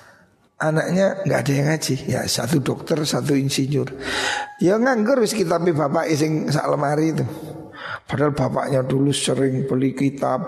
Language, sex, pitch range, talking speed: Indonesian, male, 135-185 Hz, 145 wpm